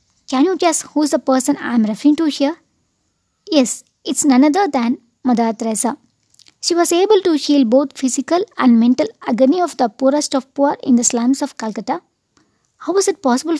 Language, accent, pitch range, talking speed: English, Indian, 245-305 Hz, 190 wpm